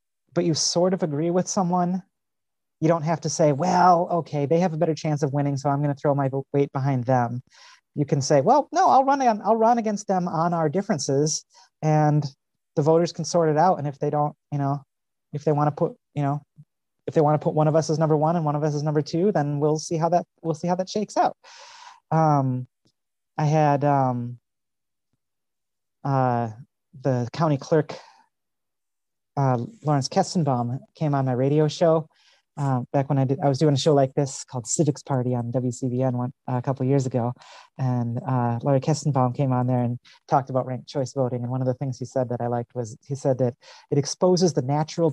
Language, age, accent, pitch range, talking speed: English, 30-49, American, 130-160 Hz, 220 wpm